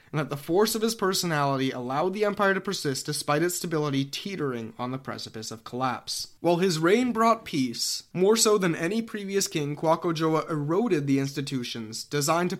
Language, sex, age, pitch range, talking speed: English, male, 20-39, 130-195 Hz, 185 wpm